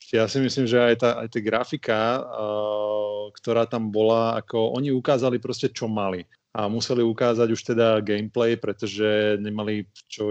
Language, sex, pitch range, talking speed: Slovak, male, 100-120 Hz, 165 wpm